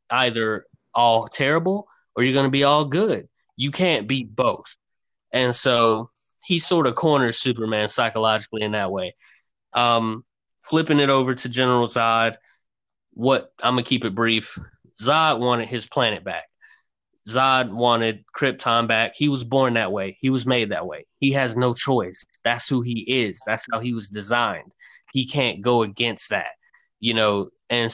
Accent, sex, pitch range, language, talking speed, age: American, male, 115-135 Hz, English, 170 wpm, 20-39